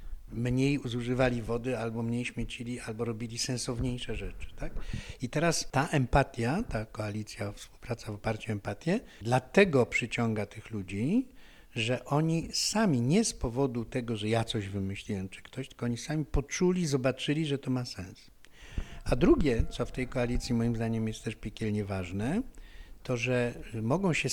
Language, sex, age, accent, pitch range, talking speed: Polish, male, 60-79, native, 115-150 Hz, 155 wpm